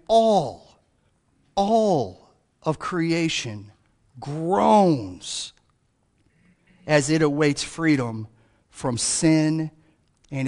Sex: male